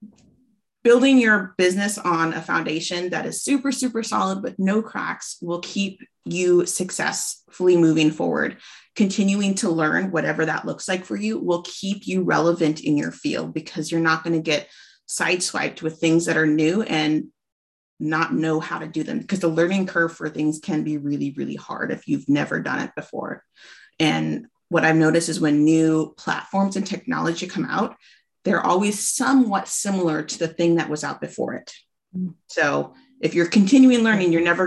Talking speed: 180 wpm